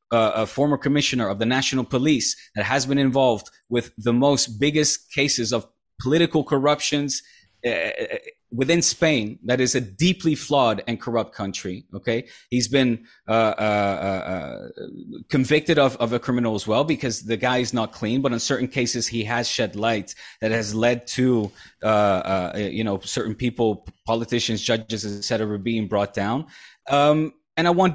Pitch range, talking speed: 110-140 Hz, 170 wpm